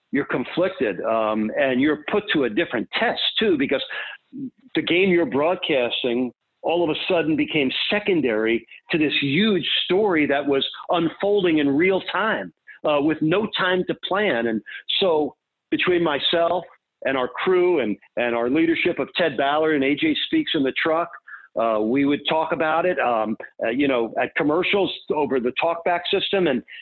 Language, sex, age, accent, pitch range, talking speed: English, male, 50-69, American, 135-185 Hz, 170 wpm